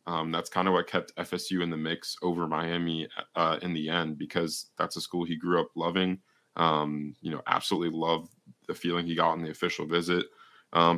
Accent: American